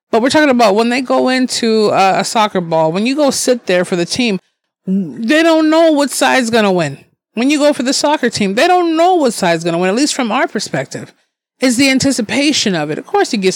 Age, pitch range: 30-49, 190-255 Hz